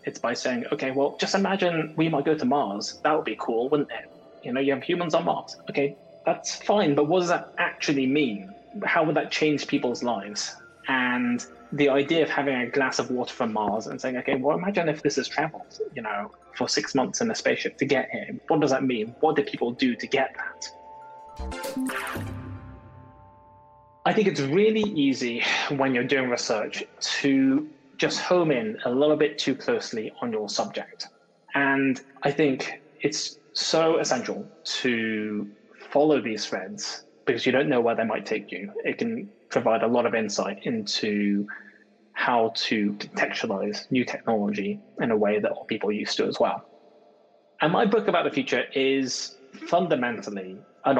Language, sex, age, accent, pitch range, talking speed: English, male, 20-39, British, 120-165 Hz, 180 wpm